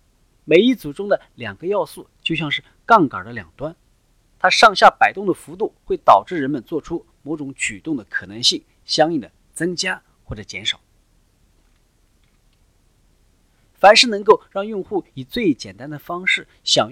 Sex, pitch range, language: male, 125-195 Hz, Chinese